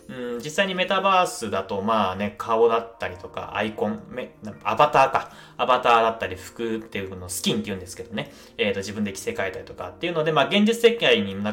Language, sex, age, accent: Japanese, male, 20-39, native